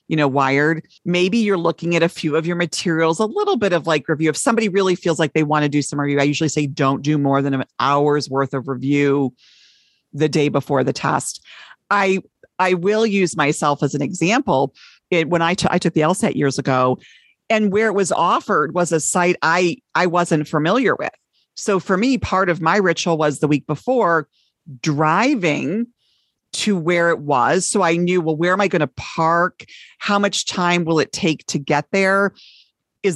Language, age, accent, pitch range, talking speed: English, 40-59, American, 150-190 Hz, 200 wpm